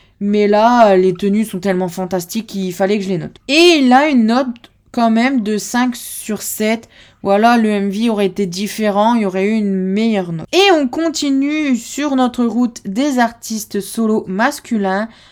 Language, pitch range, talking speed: French, 190-235 Hz, 185 wpm